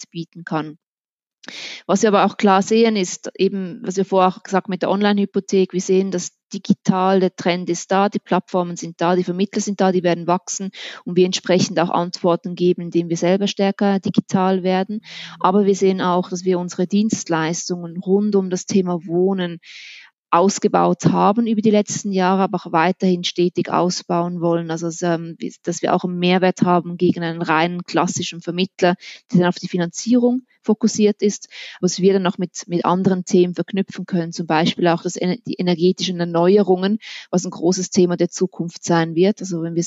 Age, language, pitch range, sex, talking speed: 20-39, German, 170-195 Hz, female, 185 wpm